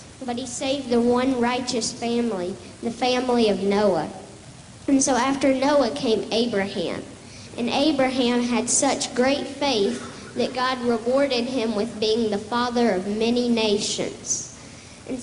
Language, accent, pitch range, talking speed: English, American, 225-255 Hz, 140 wpm